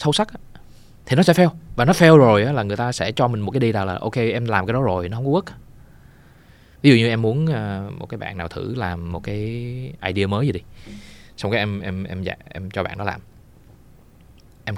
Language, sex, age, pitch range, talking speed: Vietnamese, male, 20-39, 100-135 Hz, 240 wpm